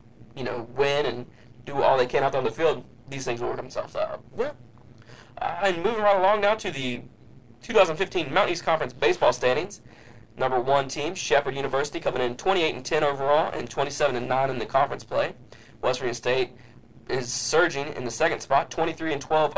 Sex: male